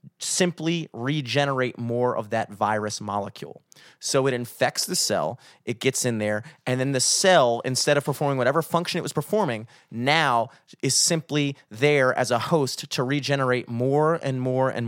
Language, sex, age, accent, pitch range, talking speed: English, male, 30-49, American, 125-160 Hz, 165 wpm